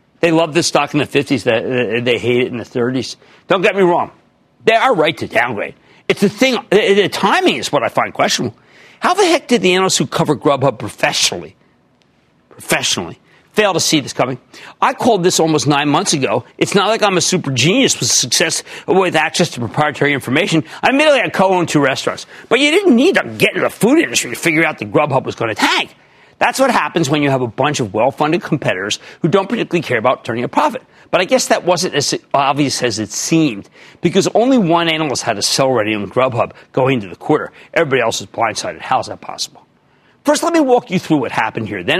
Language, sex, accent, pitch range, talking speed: English, male, American, 135-190 Hz, 220 wpm